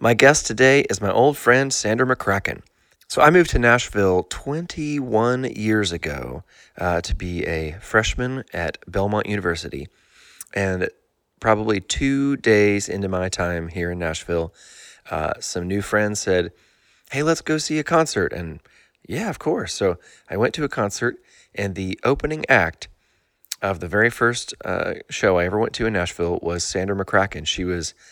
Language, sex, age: English, male, 30-49